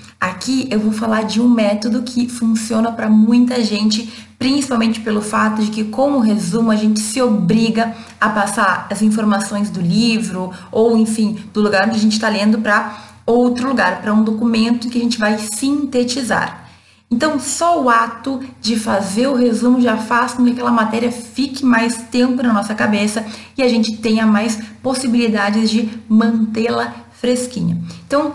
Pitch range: 210-240 Hz